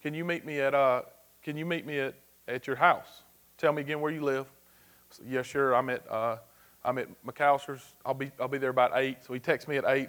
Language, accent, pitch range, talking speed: English, American, 135-170 Hz, 250 wpm